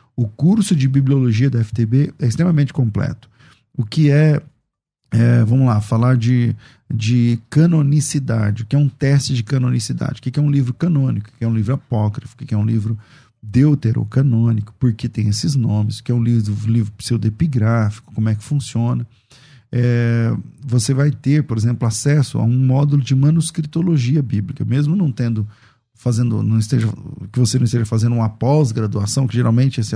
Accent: Brazilian